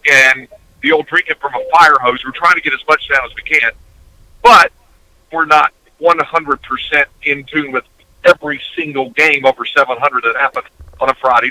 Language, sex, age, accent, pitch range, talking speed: English, male, 50-69, American, 130-165 Hz, 180 wpm